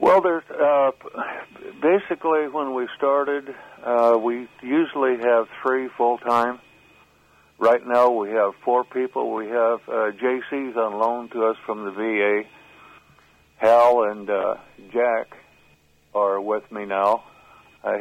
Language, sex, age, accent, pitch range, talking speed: English, male, 60-79, American, 100-125 Hz, 130 wpm